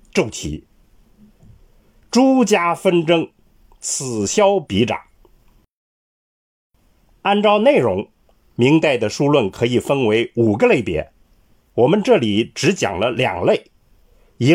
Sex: male